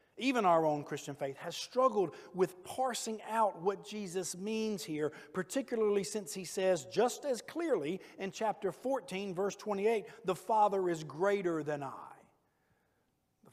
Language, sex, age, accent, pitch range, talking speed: English, male, 50-69, American, 150-200 Hz, 145 wpm